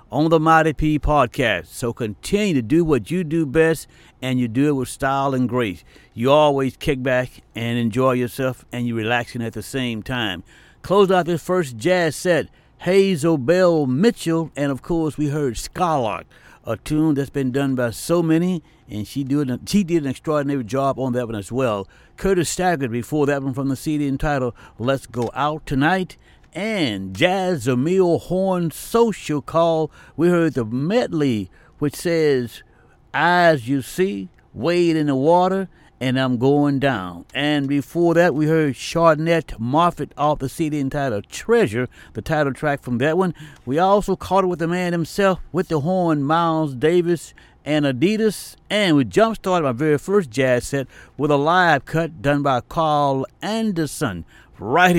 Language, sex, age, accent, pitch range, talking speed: English, male, 60-79, American, 130-175 Hz, 170 wpm